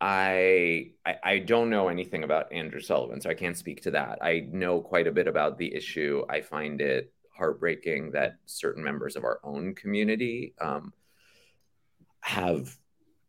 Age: 30-49